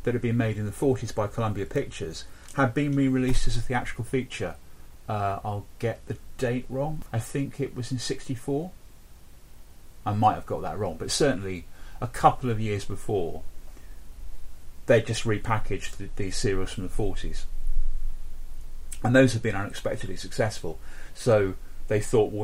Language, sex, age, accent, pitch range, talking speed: English, male, 30-49, British, 90-125 Hz, 165 wpm